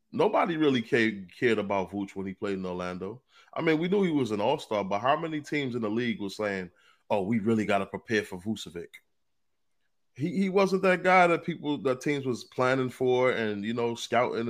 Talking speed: 210 wpm